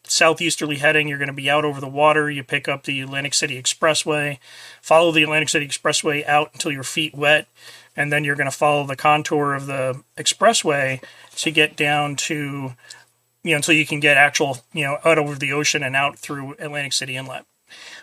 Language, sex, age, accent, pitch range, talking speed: English, male, 30-49, American, 145-165 Hz, 205 wpm